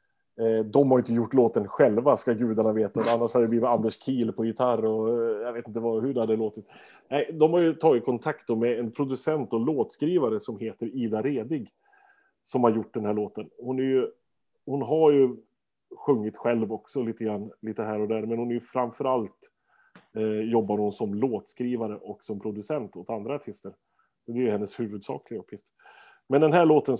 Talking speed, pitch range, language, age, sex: 195 wpm, 110-130 Hz, Swedish, 30-49, male